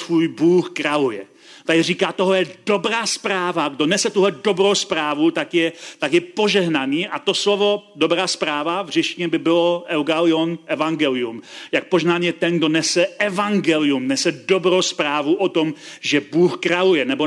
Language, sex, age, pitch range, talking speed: Czech, male, 40-59, 160-195 Hz, 155 wpm